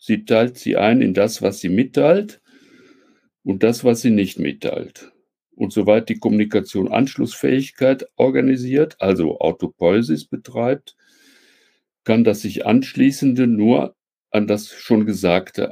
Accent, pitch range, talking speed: German, 95-125 Hz, 125 wpm